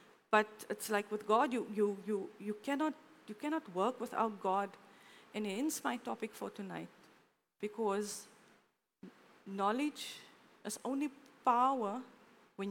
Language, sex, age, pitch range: English, female, 50-69, 205-265 Hz